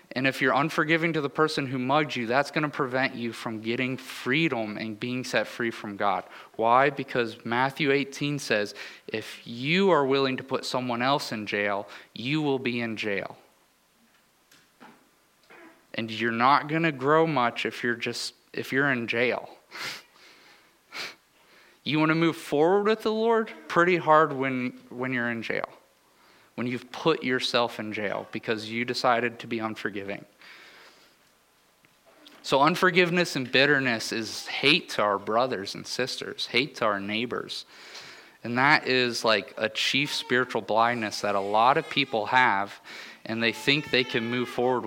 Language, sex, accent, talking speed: English, male, American, 160 wpm